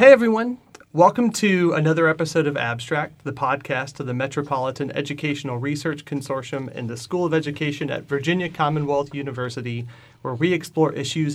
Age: 30-49